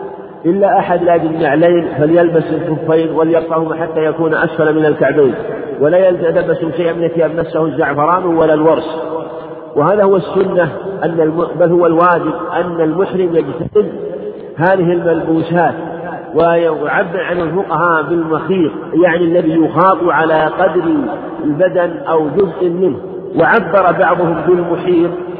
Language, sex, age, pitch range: Arabic, male, 50-69, 160-185 Hz